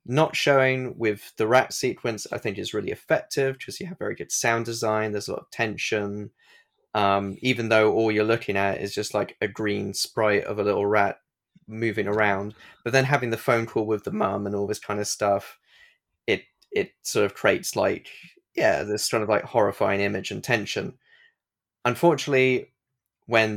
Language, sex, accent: English, male, British